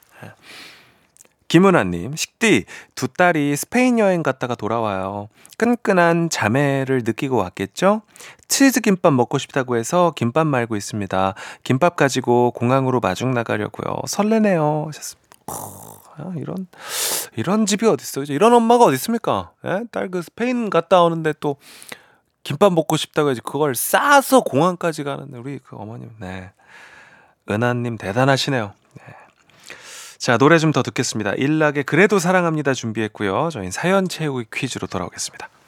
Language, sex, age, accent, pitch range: Korean, male, 30-49, native, 125-205 Hz